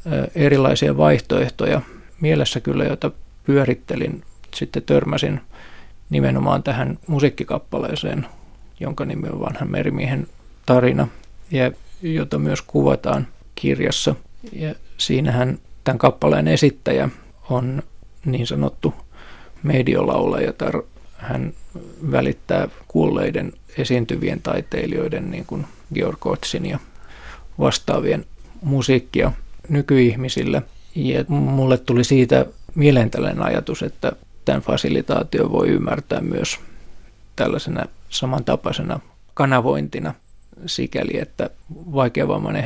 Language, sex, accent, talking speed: Finnish, male, native, 85 wpm